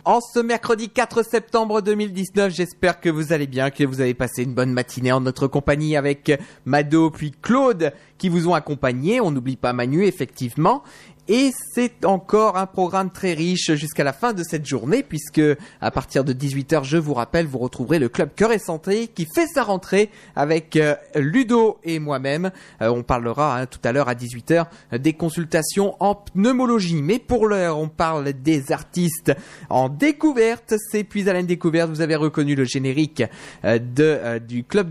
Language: French